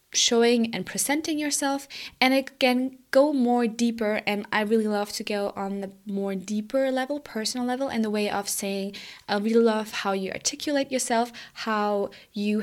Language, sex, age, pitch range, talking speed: English, female, 20-39, 200-245 Hz, 170 wpm